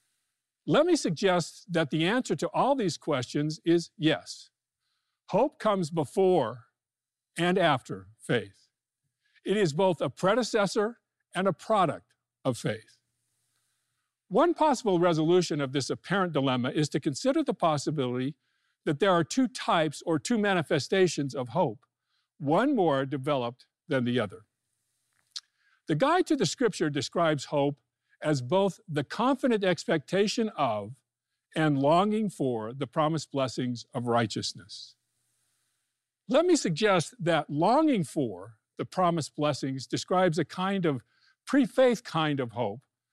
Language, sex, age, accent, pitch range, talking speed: English, male, 50-69, American, 130-190 Hz, 130 wpm